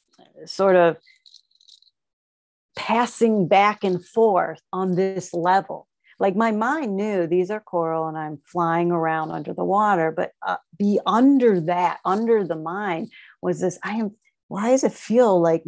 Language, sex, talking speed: English, female, 155 wpm